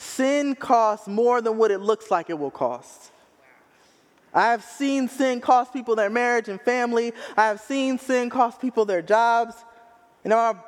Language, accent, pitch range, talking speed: English, American, 215-255 Hz, 170 wpm